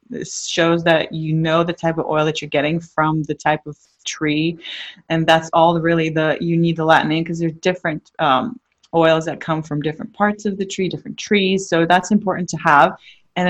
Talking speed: 215 wpm